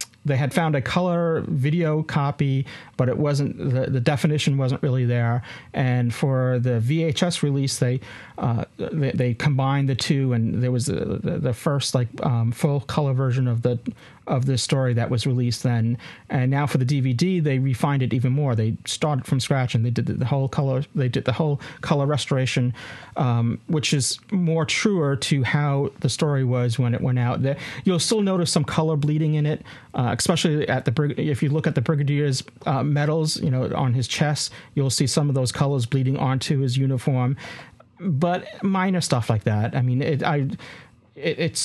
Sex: male